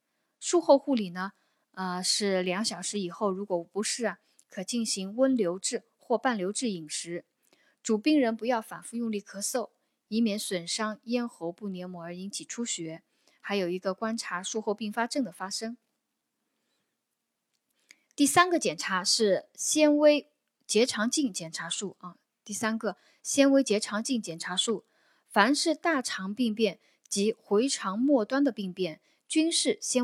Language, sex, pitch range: Chinese, female, 190-255 Hz